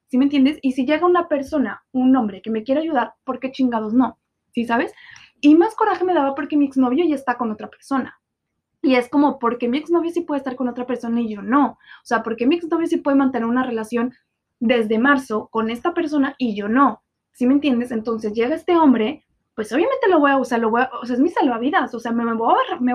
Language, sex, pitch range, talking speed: Spanish, female, 235-280 Hz, 255 wpm